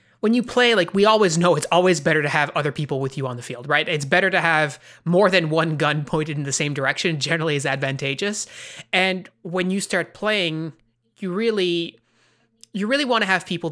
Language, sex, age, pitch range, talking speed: English, male, 20-39, 140-185 Hz, 215 wpm